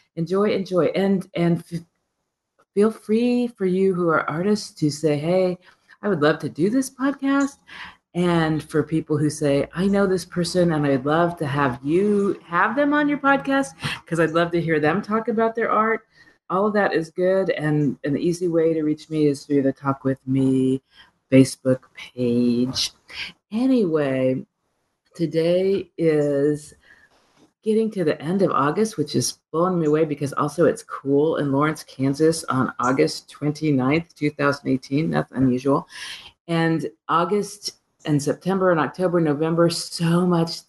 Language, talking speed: English, 160 wpm